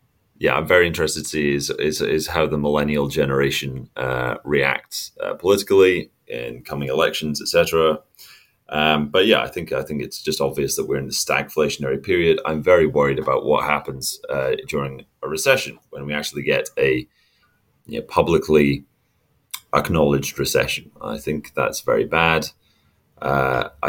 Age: 30-49